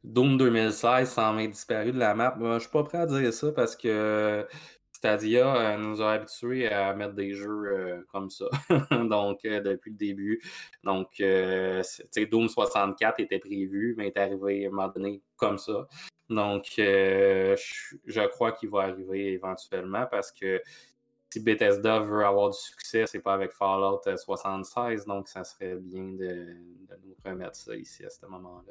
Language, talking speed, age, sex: French, 165 wpm, 20-39, male